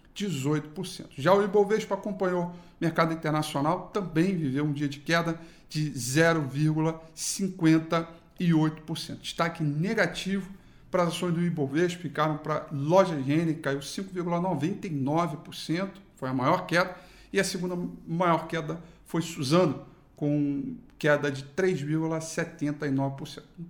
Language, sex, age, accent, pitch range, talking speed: Portuguese, male, 50-69, Brazilian, 145-185 Hz, 115 wpm